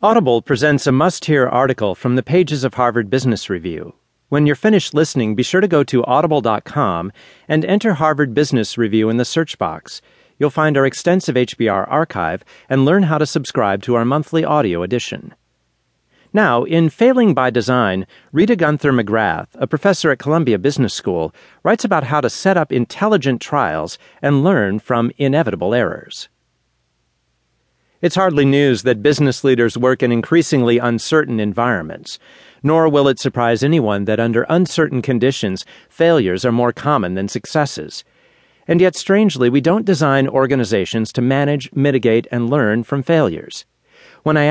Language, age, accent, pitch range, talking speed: English, 40-59, American, 115-155 Hz, 155 wpm